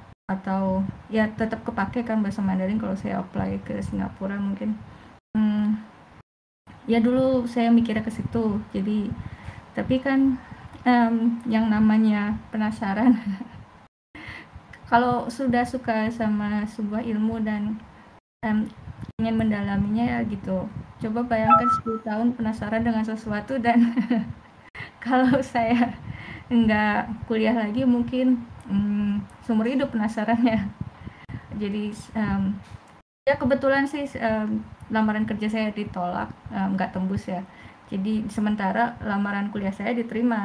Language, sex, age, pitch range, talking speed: Indonesian, female, 20-39, 200-235 Hz, 115 wpm